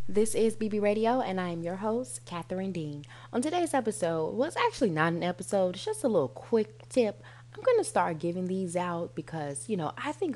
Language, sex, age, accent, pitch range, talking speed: English, female, 20-39, American, 150-210 Hz, 215 wpm